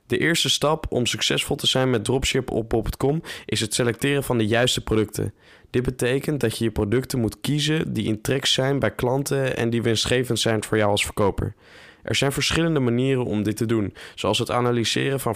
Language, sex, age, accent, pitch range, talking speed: Dutch, male, 10-29, Dutch, 110-135 Hz, 205 wpm